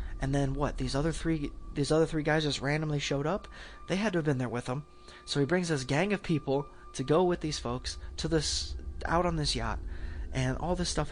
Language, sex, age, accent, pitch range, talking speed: English, male, 20-39, American, 120-155 Hz, 235 wpm